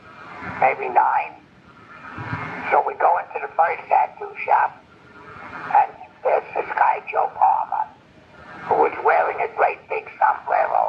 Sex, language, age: male, English, 60-79